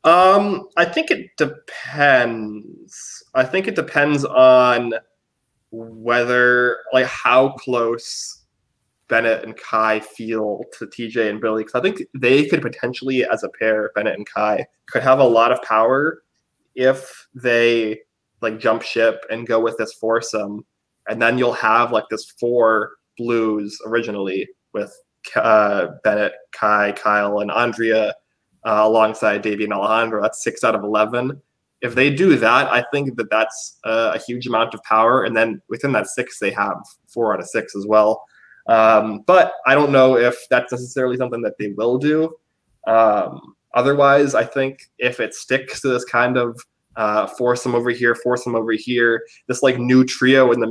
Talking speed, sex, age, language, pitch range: 165 wpm, male, 20-39, English, 110-125 Hz